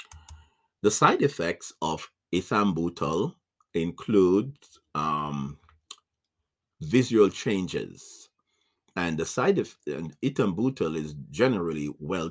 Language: English